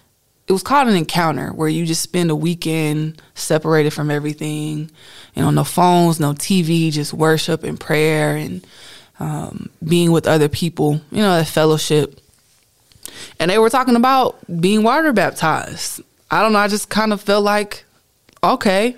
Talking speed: 165 wpm